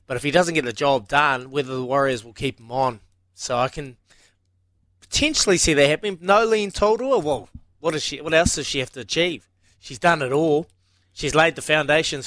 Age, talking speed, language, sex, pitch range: 20-39, 200 wpm, English, male, 120-160 Hz